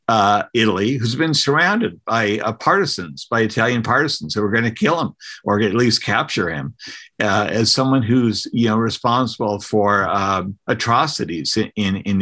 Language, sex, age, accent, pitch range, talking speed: English, male, 50-69, American, 105-130 Hz, 165 wpm